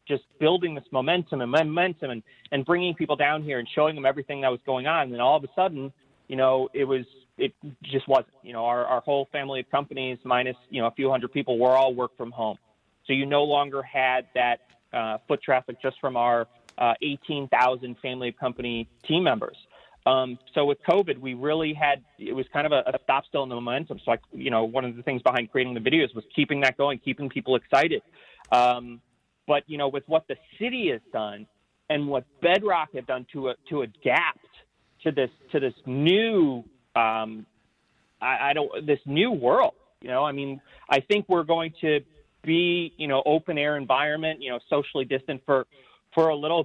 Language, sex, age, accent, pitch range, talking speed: English, male, 30-49, American, 125-150 Hz, 210 wpm